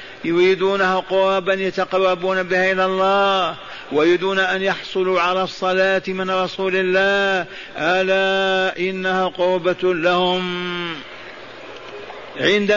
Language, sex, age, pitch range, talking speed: Arabic, male, 50-69, 170-190 Hz, 90 wpm